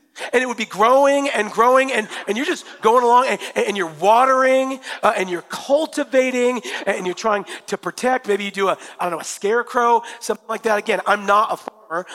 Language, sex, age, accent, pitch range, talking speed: English, male, 40-59, American, 200-260 Hz, 210 wpm